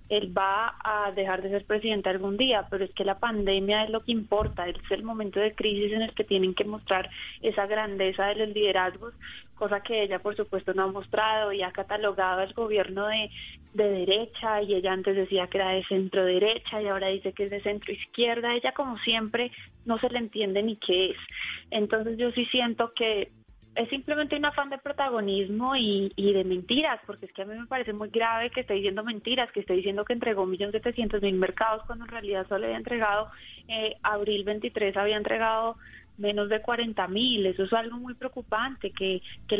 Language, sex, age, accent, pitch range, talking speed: Spanish, female, 20-39, Colombian, 195-230 Hz, 200 wpm